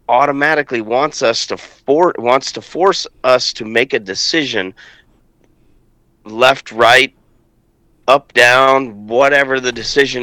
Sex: male